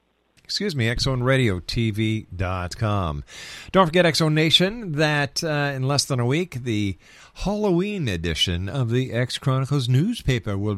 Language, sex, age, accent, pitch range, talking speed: English, male, 50-69, American, 105-145 Hz, 140 wpm